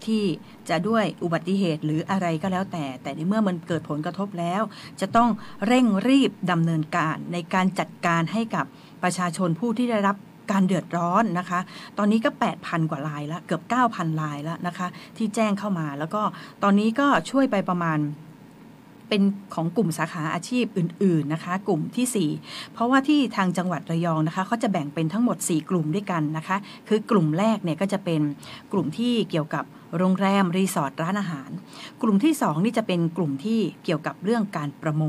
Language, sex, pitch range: Thai, female, 165-220 Hz